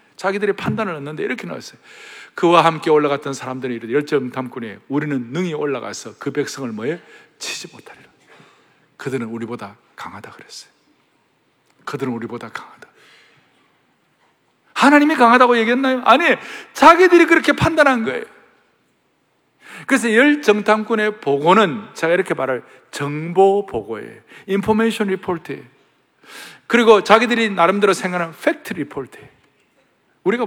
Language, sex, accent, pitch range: Korean, male, native, 175-290 Hz